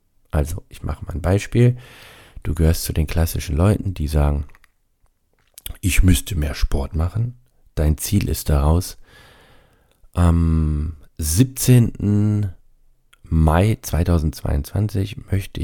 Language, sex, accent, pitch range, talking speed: German, male, German, 80-105 Hz, 105 wpm